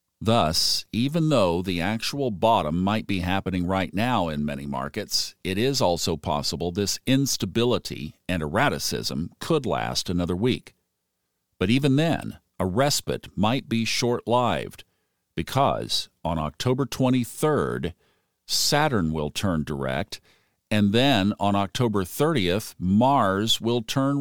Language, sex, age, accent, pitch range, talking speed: English, male, 50-69, American, 85-120 Hz, 125 wpm